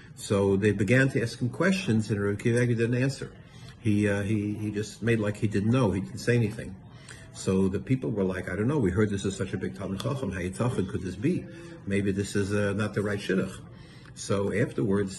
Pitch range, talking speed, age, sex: 105-130 Hz, 215 wpm, 60-79, male